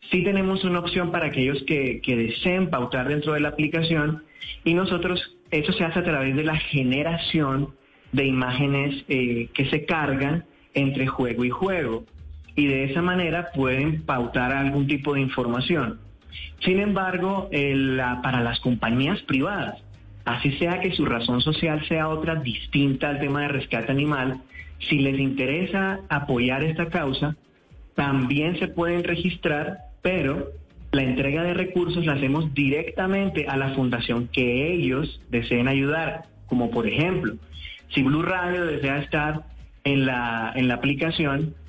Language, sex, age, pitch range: Spanish, male, 30-49, 125-160 Hz